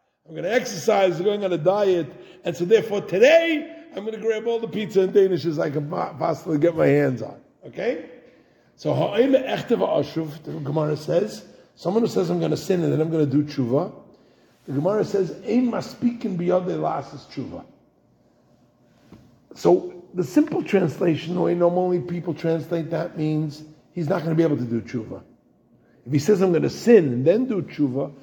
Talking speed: 185 wpm